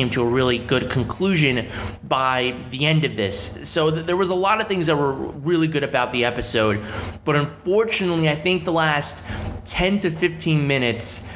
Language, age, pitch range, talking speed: English, 30-49, 125-160 Hz, 185 wpm